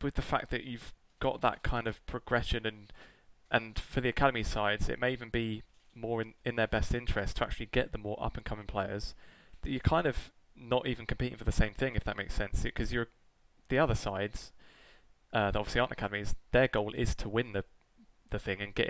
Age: 20-39